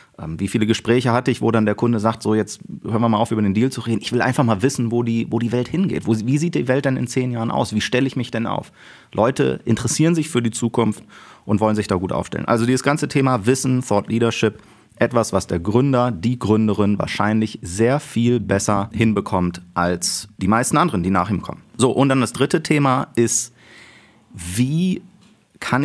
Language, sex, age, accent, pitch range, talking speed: German, male, 30-49, German, 105-125 Hz, 220 wpm